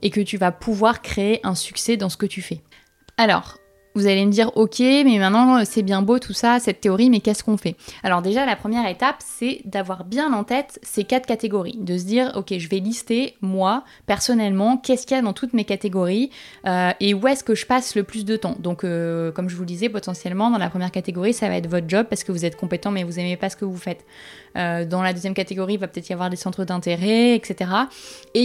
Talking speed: 250 wpm